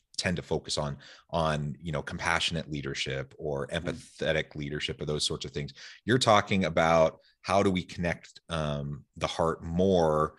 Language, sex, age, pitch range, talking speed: English, male, 30-49, 80-95 Hz, 150 wpm